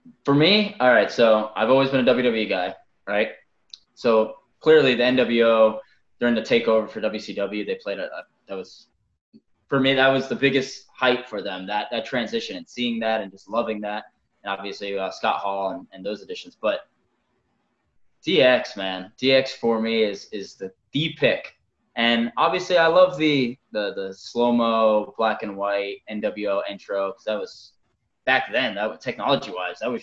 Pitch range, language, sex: 105-125 Hz, English, male